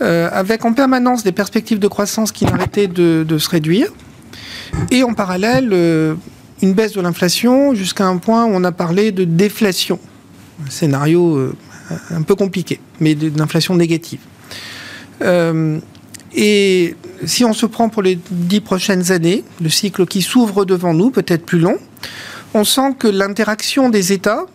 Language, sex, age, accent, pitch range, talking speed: French, male, 50-69, French, 175-215 Hz, 150 wpm